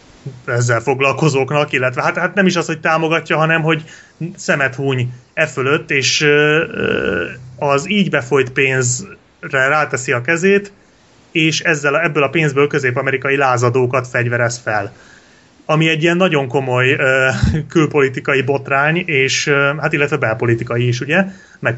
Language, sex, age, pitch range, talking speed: Hungarian, male, 30-49, 125-160 Hz, 140 wpm